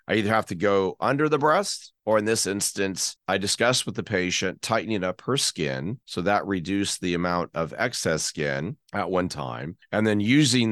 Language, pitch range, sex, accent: English, 90-115 Hz, male, American